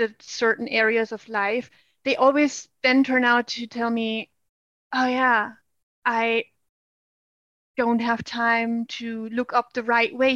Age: 20-39